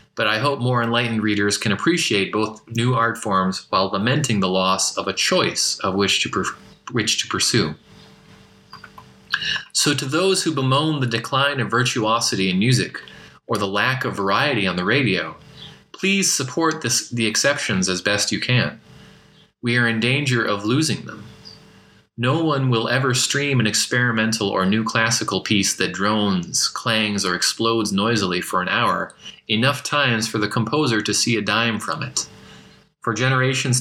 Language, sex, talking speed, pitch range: English, male, 165 wpm, 105-130 Hz